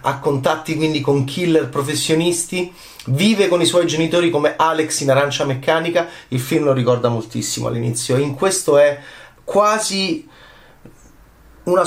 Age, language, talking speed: 30-49, Italian, 135 wpm